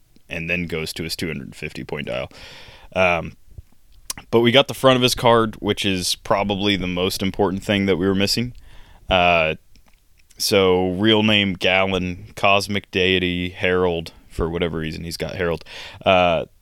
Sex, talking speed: male, 150 wpm